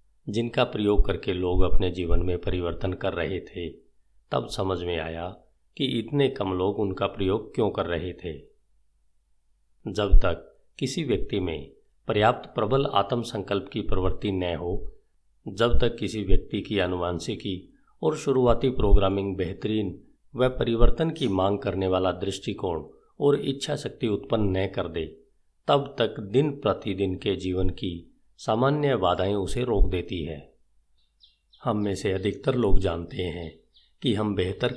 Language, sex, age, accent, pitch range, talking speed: Hindi, male, 50-69, native, 90-110 Hz, 145 wpm